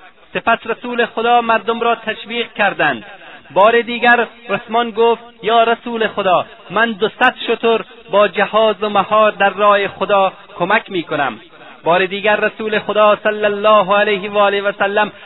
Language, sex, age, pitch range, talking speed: Persian, male, 30-49, 185-225 Hz, 150 wpm